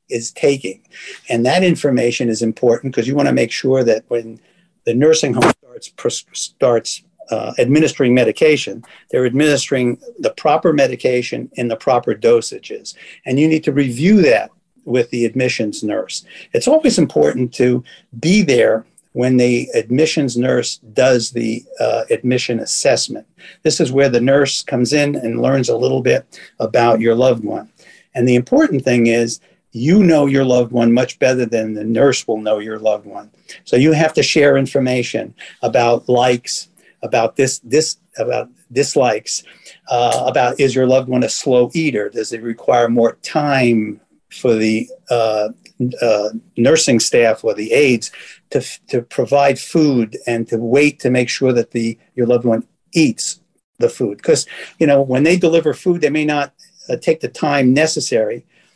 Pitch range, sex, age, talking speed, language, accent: 120-155 Hz, male, 50-69, 165 wpm, English, American